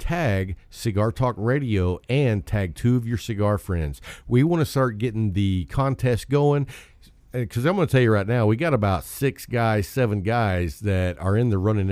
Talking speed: 195 wpm